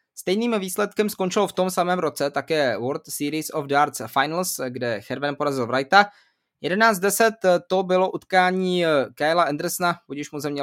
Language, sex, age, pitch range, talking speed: Czech, male, 20-39, 140-180 Hz, 145 wpm